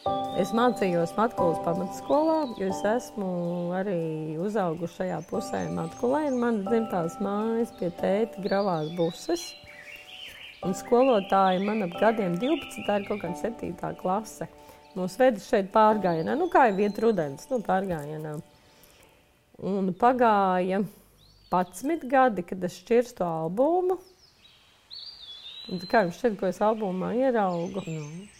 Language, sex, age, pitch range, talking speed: English, female, 30-49, 180-235 Hz, 120 wpm